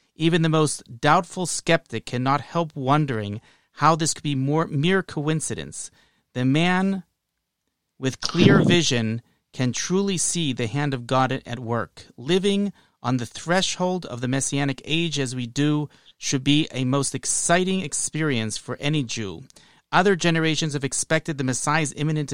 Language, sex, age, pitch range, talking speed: English, male, 30-49, 120-155 Hz, 150 wpm